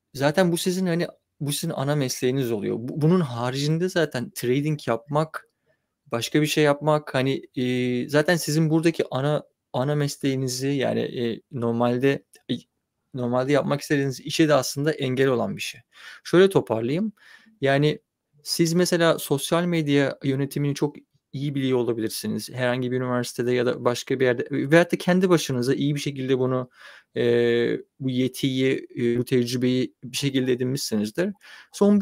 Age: 30-49